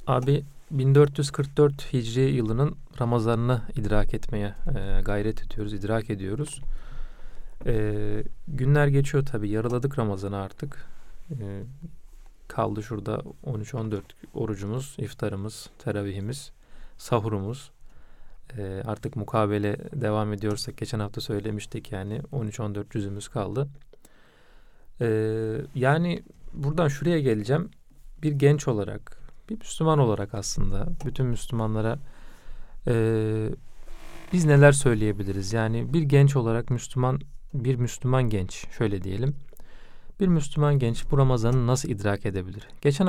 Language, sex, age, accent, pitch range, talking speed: Turkish, male, 40-59, native, 105-140 Hz, 105 wpm